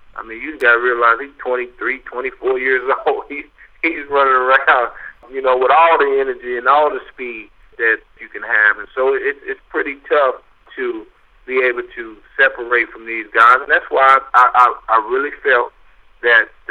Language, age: English, 50-69